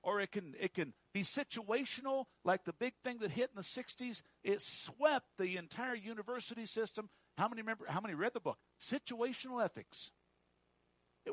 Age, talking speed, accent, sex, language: 60-79, 175 wpm, American, male, English